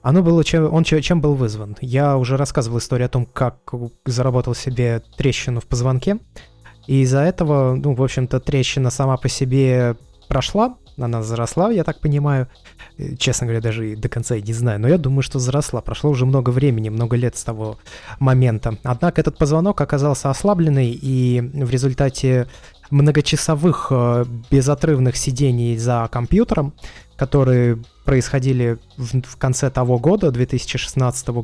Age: 20-39